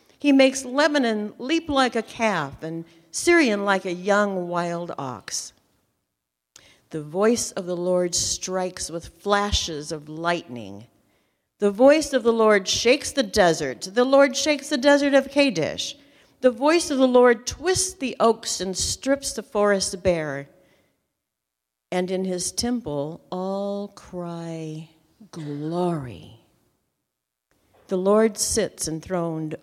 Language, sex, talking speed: English, female, 130 wpm